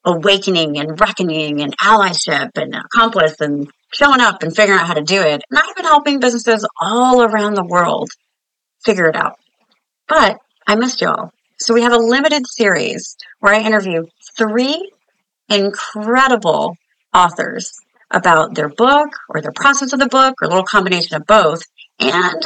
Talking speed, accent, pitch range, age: 165 wpm, American, 170-250 Hz, 40-59